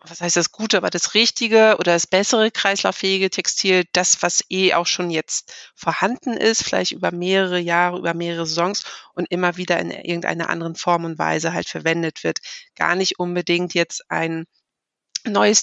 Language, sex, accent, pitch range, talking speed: German, female, German, 165-190 Hz, 175 wpm